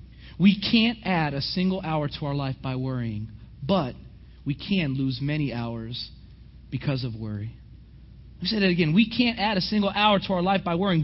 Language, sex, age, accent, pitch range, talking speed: English, male, 30-49, American, 135-185 Hz, 195 wpm